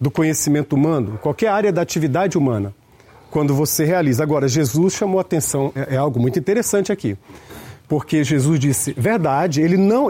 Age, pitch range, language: 40-59, 135-195 Hz, Portuguese